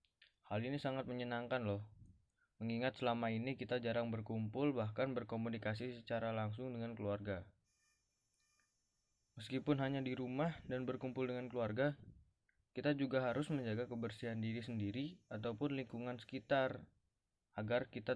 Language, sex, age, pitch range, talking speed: Indonesian, male, 20-39, 110-130 Hz, 120 wpm